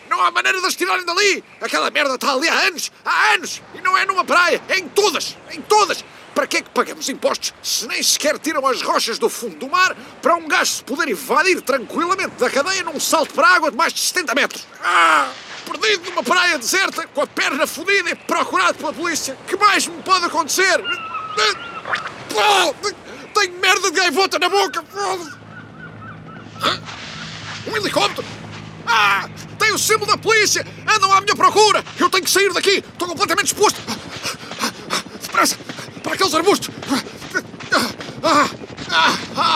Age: 50-69